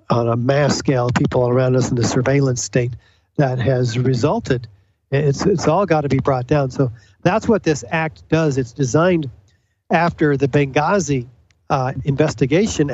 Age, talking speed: 50-69, 165 wpm